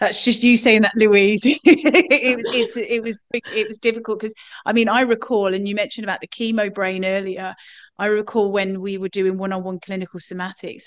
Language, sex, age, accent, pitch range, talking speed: English, female, 30-49, British, 190-225 Hz, 200 wpm